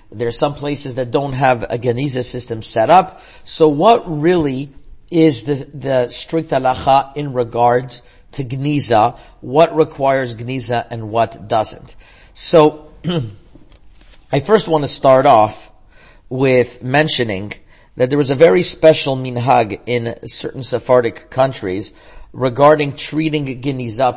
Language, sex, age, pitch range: English, male, 40-59, 125-155 Hz